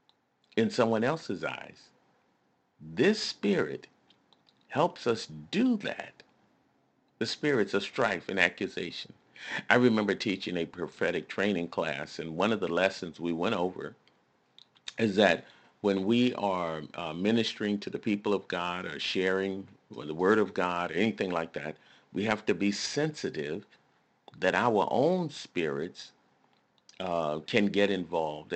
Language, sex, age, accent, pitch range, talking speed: English, male, 50-69, American, 95-125 Hz, 135 wpm